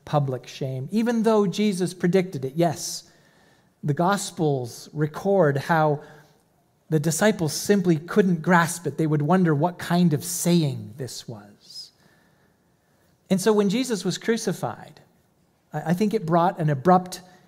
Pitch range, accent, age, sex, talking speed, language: 150-185 Hz, American, 40-59, male, 135 wpm, English